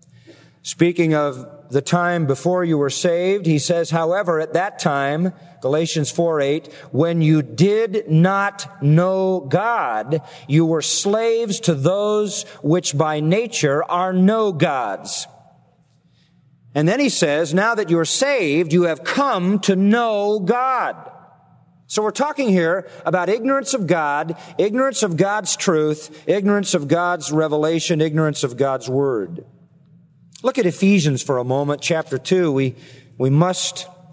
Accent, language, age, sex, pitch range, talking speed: American, English, 40-59, male, 150-190 Hz, 140 wpm